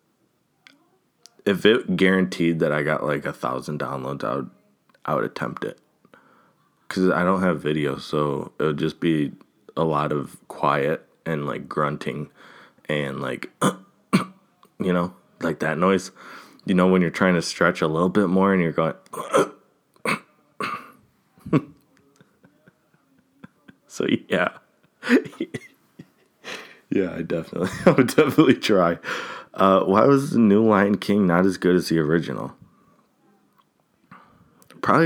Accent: American